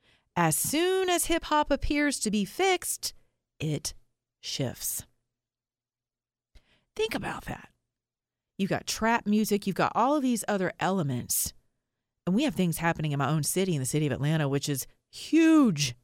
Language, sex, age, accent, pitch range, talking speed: English, female, 30-49, American, 145-200 Hz, 155 wpm